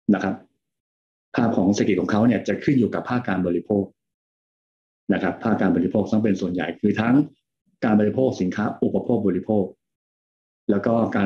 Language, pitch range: Thai, 95-120 Hz